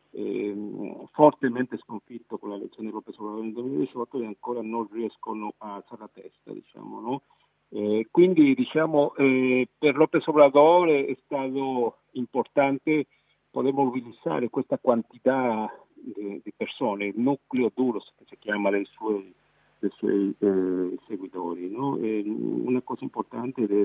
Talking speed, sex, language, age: 135 wpm, male, Italian, 50-69